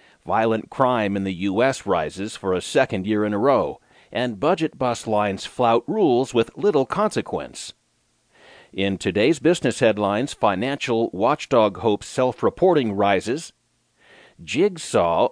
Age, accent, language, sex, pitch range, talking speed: 40-59, American, English, male, 105-145 Hz, 125 wpm